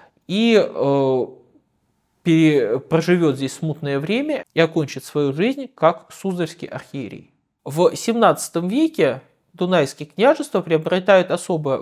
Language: Russian